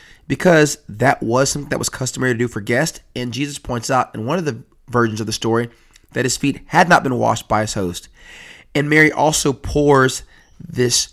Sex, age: male, 30-49